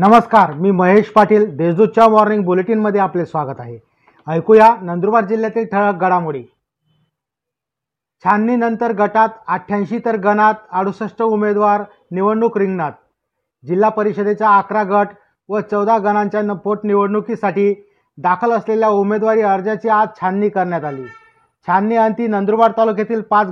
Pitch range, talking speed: 200-220 Hz, 110 wpm